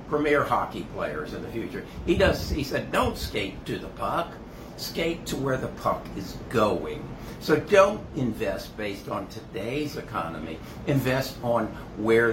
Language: English